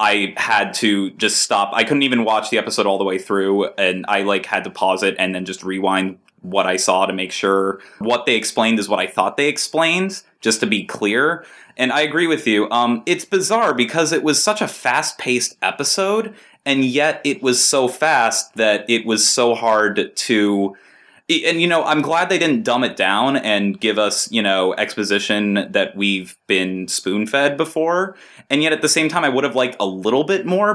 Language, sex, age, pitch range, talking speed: English, male, 20-39, 100-140 Hz, 215 wpm